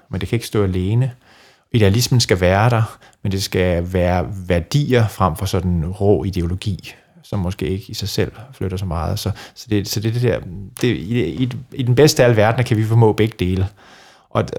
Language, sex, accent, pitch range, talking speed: Danish, male, native, 95-120 Hz, 200 wpm